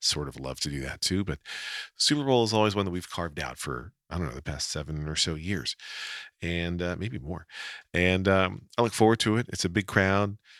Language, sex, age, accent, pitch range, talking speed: English, male, 40-59, American, 80-100 Hz, 240 wpm